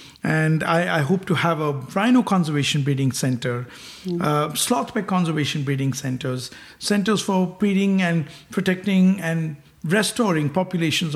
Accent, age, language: Indian, 50-69, English